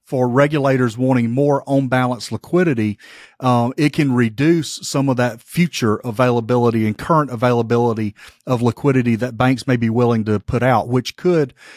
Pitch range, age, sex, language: 115-140 Hz, 30-49, male, English